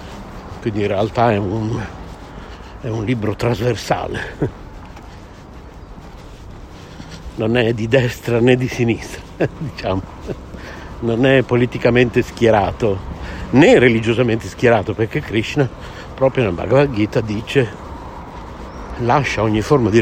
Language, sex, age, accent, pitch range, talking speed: Italian, male, 60-79, native, 95-125 Hz, 105 wpm